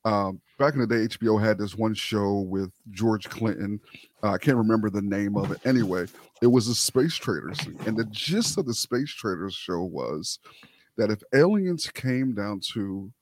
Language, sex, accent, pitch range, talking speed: English, male, American, 105-140 Hz, 190 wpm